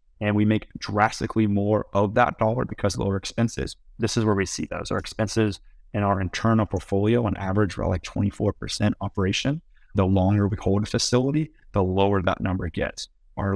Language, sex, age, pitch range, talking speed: English, male, 30-49, 95-115 Hz, 185 wpm